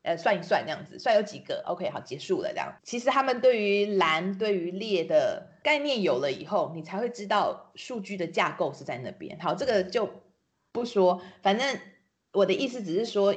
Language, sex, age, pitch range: Chinese, female, 30-49, 170-215 Hz